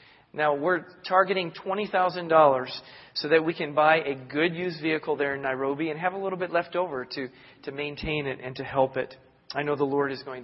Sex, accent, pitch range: male, American, 135-175 Hz